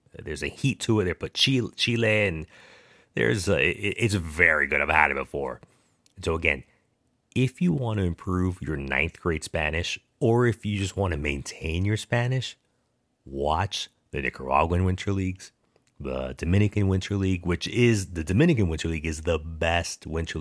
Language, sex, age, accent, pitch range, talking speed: English, male, 30-49, American, 80-100 Hz, 175 wpm